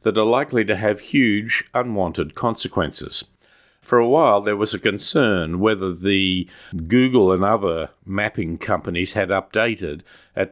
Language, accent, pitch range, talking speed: English, Australian, 95-110 Hz, 145 wpm